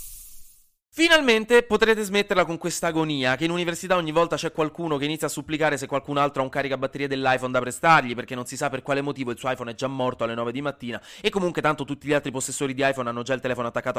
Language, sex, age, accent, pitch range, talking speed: Italian, male, 20-39, native, 120-180 Hz, 245 wpm